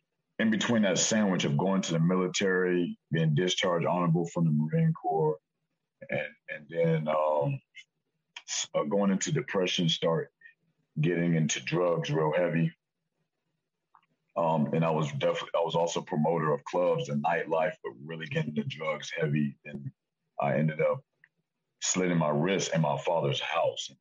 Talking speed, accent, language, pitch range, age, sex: 150 wpm, American, English, 75-95 Hz, 50-69, male